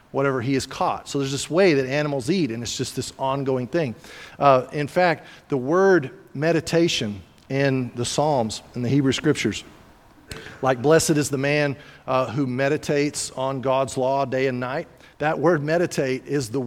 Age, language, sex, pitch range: 50-69, English, male, 130-180 Hz